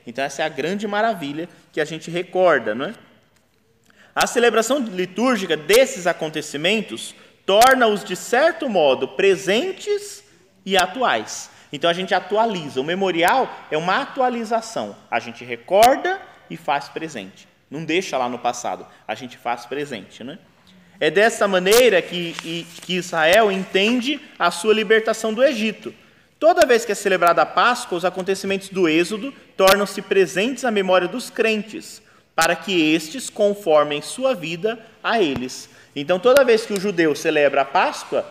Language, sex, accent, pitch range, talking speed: Portuguese, male, Brazilian, 160-225 Hz, 150 wpm